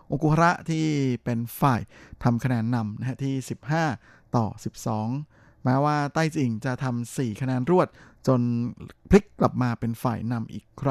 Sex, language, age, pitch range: male, Thai, 20-39, 115-140 Hz